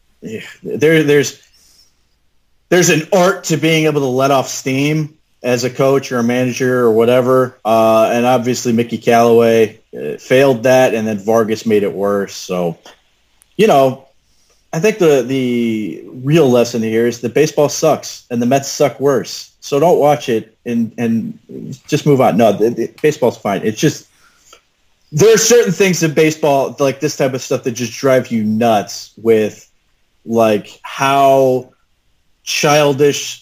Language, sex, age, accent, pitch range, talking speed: English, male, 30-49, American, 110-135 Hz, 160 wpm